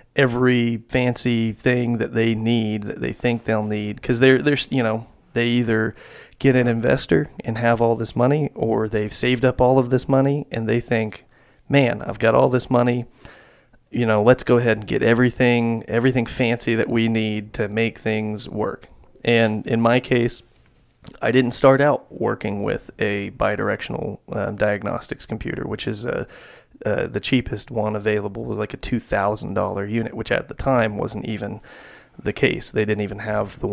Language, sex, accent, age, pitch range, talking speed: English, male, American, 30-49, 110-125 Hz, 180 wpm